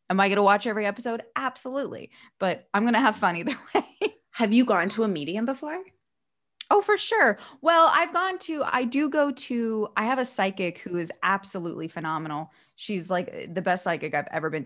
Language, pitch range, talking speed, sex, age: English, 175-240 Hz, 205 wpm, female, 20-39